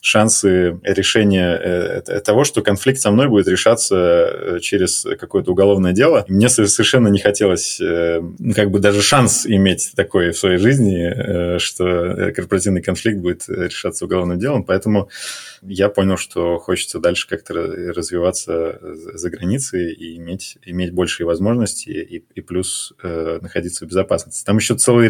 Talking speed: 130 wpm